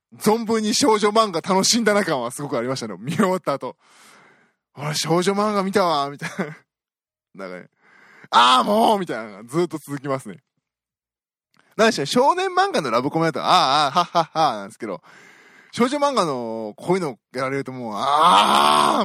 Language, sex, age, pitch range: Japanese, male, 20-39, 130-205 Hz